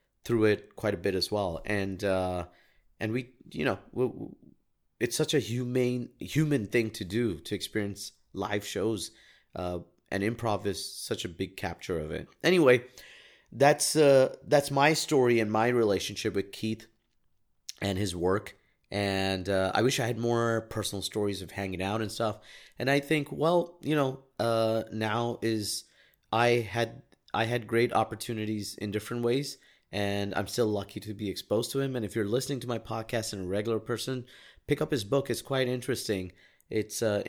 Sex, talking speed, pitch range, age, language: male, 175 wpm, 100-135 Hz, 30-49, English